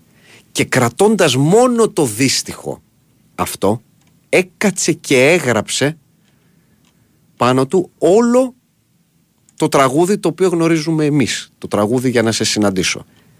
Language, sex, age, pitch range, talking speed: Greek, male, 40-59, 90-145 Hz, 110 wpm